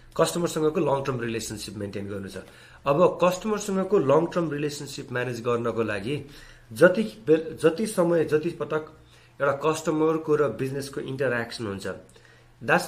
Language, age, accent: English, 30-49, Indian